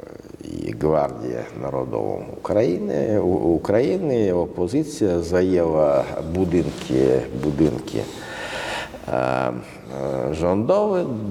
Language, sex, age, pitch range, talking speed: Polish, male, 50-69, 80-125 Hz, 55 wpm